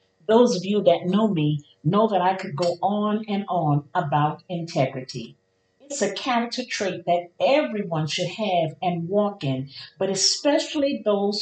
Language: English